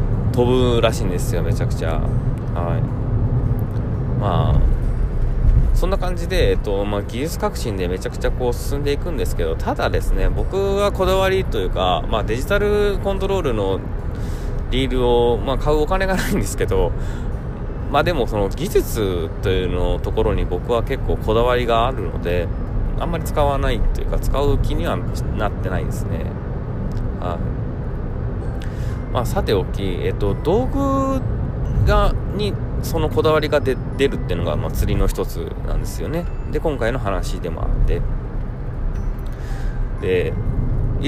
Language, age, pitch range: Japanese, 20-39, 100-130 Hz